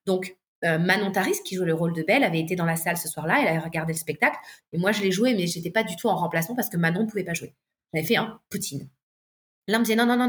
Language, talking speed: French, 315 wpm